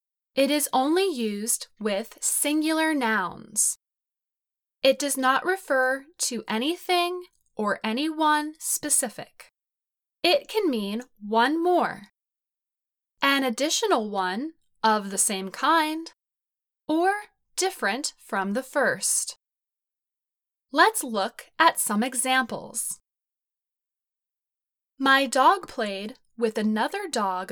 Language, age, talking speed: English, 10-29, 95 wpm